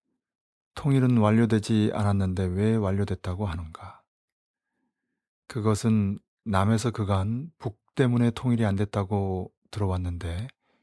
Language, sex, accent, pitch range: Korean, male, native, 95-115 Hz